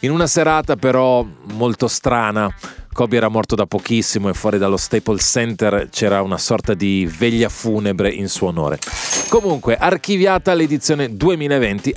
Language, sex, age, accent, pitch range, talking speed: Italian, male, 30-49, native, 110-145 Hz, 145 wpm